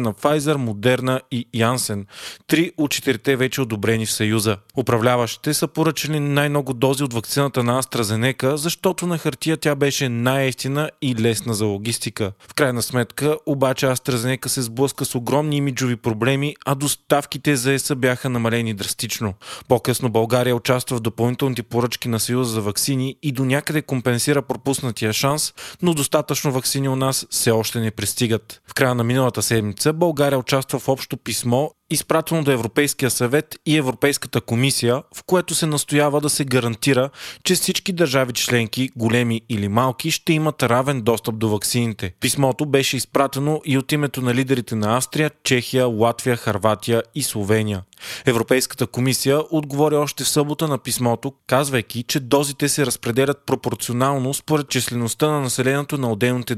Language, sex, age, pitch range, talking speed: Bulgarian, male, 20-39, 120-145 Hz, 155 wpm